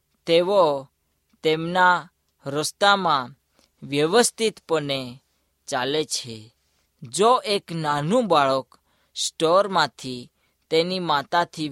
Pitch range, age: 125-175 Hz, 20-39